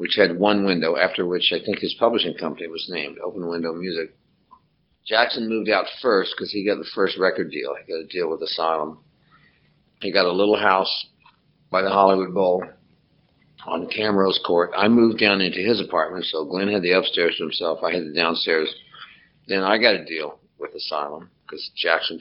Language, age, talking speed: English, 50-69, 190 wpm